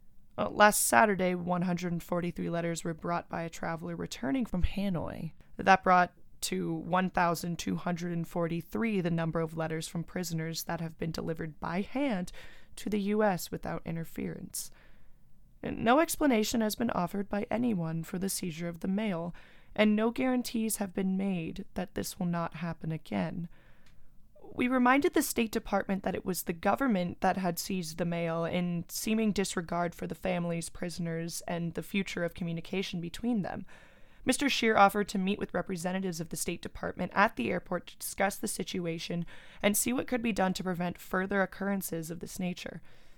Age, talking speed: 20-39, 165 wpm